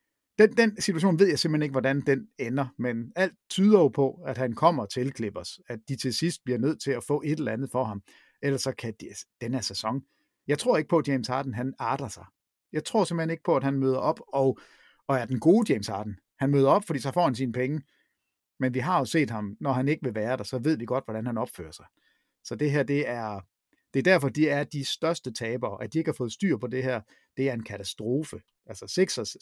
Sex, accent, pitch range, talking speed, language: male, native, 125-165 Hz, 255 wpm, Danish